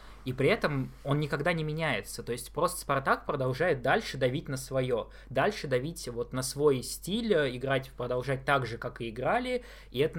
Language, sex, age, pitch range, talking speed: Russian, male, 20-39, 120-150 Hz, 185 wpm